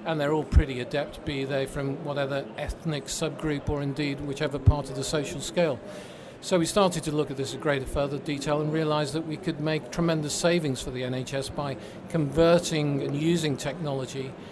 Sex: male